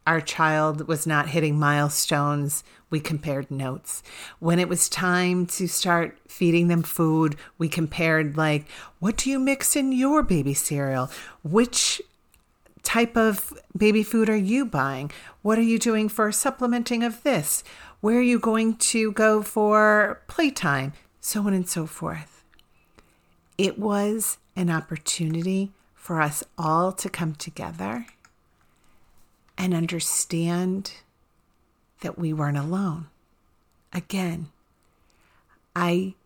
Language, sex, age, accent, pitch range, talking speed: English, female, 40-59, American, 155-195 Hz, 125 wpm